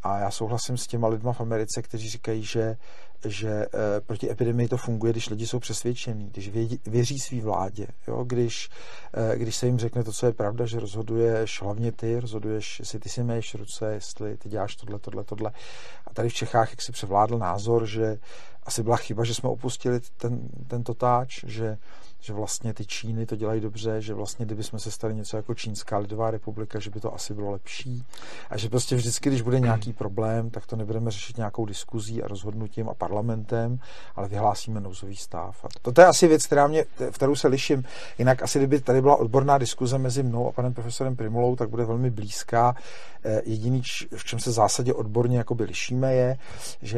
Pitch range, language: 110-120 Hz, Czech